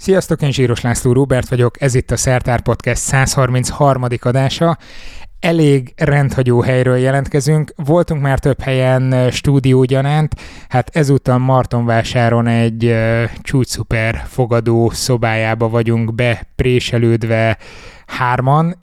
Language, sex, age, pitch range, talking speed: Hungarian, male, 20-39, 115-130 Hz, 100 wpm